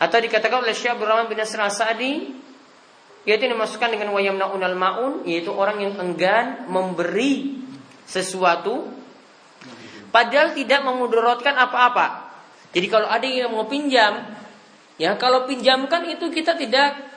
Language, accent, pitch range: Indonesian, native, 185-245 Hz